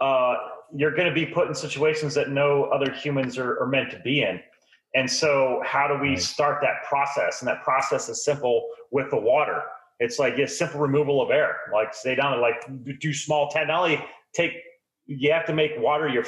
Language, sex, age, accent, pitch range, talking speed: English, male, 30-49, American, 135-155 Hz, 220 wpm